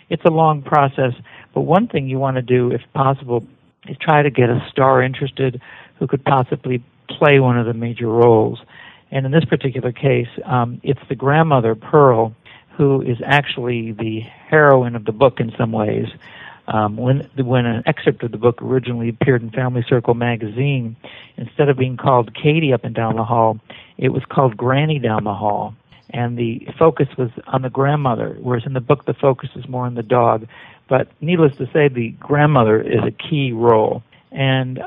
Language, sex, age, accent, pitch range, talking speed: English, male, 50-69, American, 120-140 Hz, 190 wpm